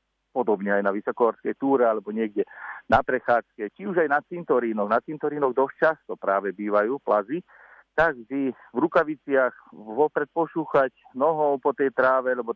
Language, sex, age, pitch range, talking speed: Slovak, male, 50-69, 105-130 Hz, 150 wpm